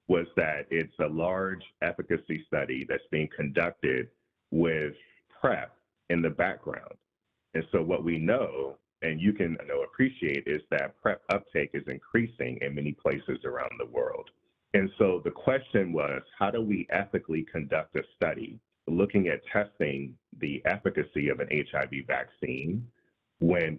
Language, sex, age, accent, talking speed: English, male, 40-59, American, 145 wpm